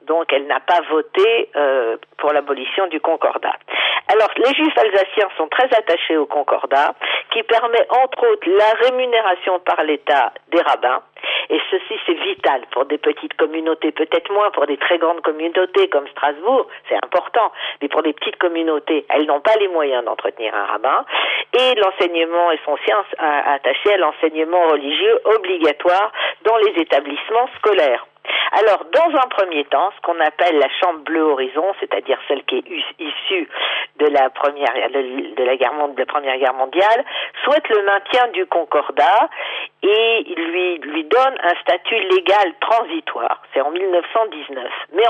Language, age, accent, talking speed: French, 50-69, French, 155 wpm